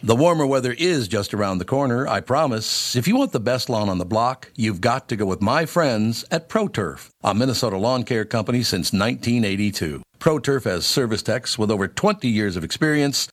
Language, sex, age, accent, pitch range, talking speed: English, male, 60-79, American, 100-135 Hz, 205 wpm